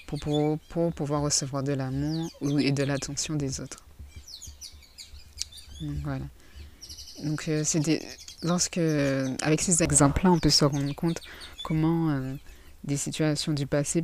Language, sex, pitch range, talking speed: French, female, 100-160 Hz, 150 wpm